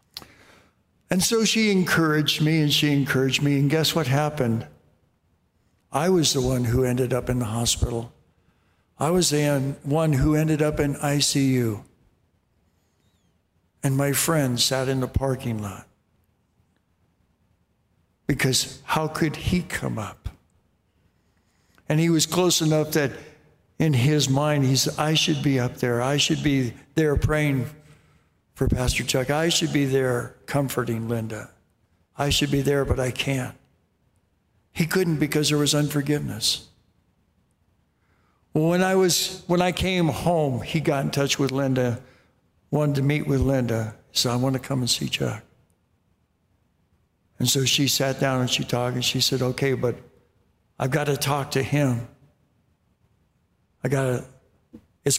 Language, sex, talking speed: English, male, 150 wpm